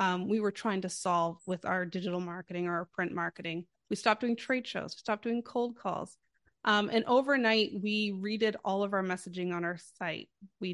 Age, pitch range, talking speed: 30-49, 180-215 Hz, 205 wpm